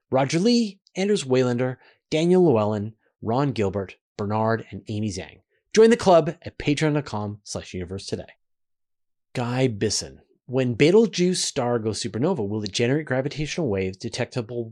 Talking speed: 135 wpm